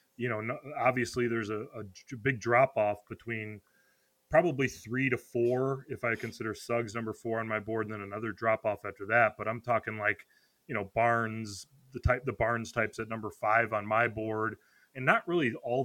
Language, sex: English, male